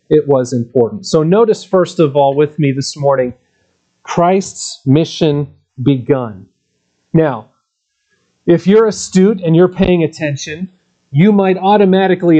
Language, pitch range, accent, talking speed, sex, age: English, 145-190 Hz, American, 125 wpm, male, 40-59